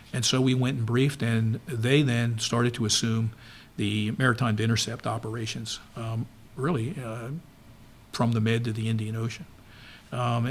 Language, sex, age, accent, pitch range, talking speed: English, male, 50-69, American, 115-130 Hz, 155 wpm